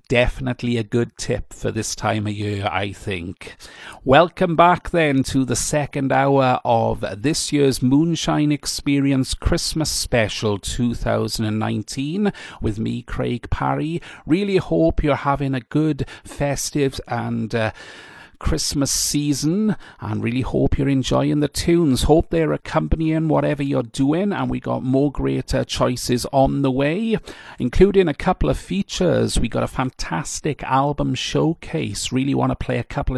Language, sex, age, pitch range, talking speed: English, male, 40-59, 115-150 Hz, 145 wpm